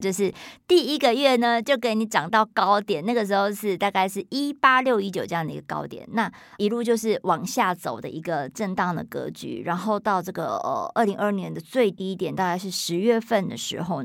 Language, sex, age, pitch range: Chinese, male, 50-69, 185-235 Hz